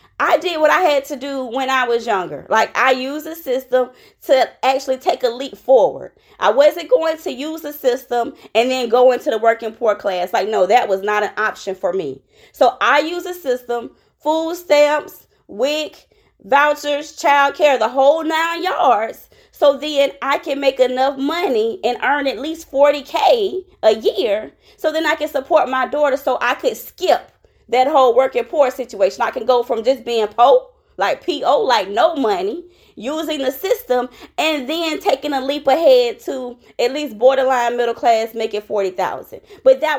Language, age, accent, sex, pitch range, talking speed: English, 20-39, American, female, 260-350 Hz, 185 wpm